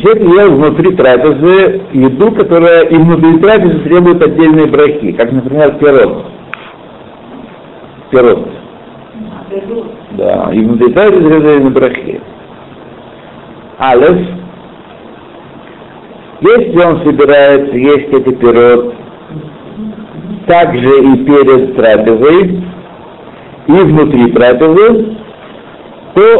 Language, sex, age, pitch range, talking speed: Russian, male, 60-79, 130-185 Hz, 80 wpm